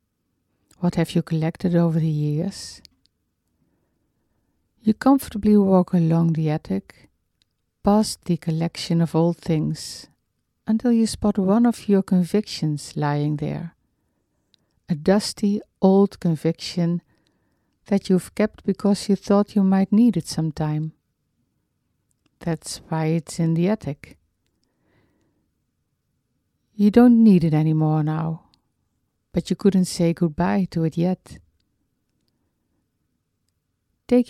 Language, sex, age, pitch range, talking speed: English, female, 60-79, 150-200 Hz, 110 wpm